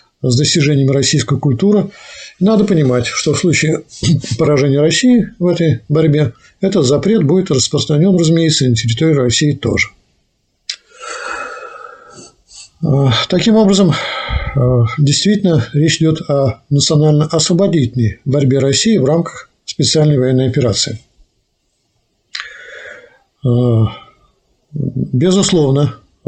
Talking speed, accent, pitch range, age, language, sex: 85 wpm, native, 125-175 Hz, 50-69, Russian, male